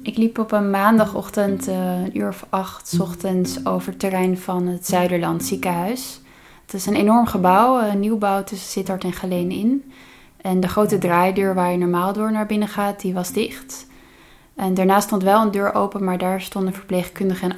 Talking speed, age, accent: 190 wpm, 20-39, Dutch